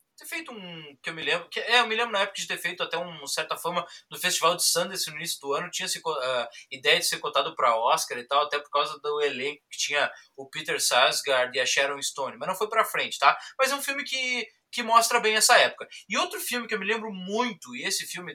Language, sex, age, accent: Portuguese, male, 20-39, Brazilian